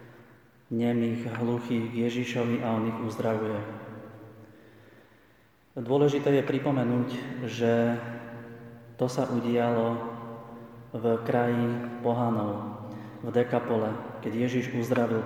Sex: male